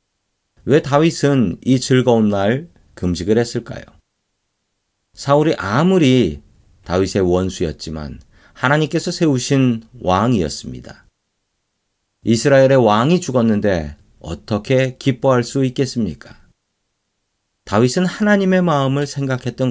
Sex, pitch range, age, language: male, 100-125 Hz, 40-59, Korean